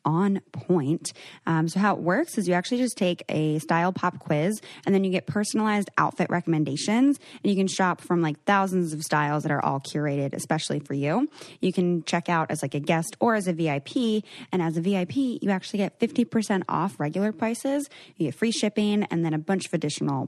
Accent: American